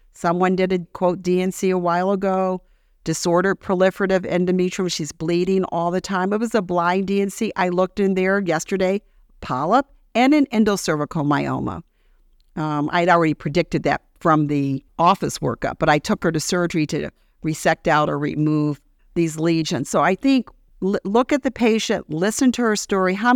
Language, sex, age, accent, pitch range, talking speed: English, female, 50-69, American, 175-225 Hz, 165 wpm